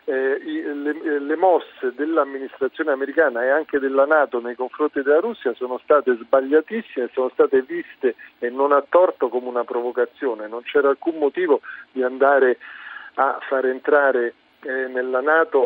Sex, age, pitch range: male, 40-59, 125-150 Hz